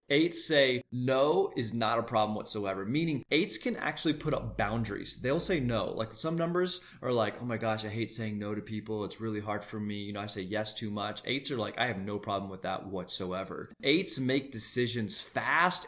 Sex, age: male, 30-49